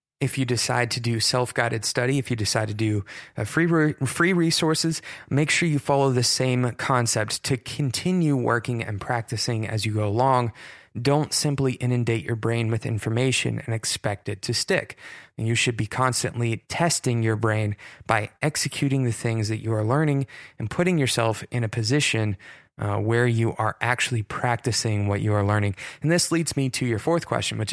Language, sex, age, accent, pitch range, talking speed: English, male, 20-39, American, 110-135 Hz, 180 wpm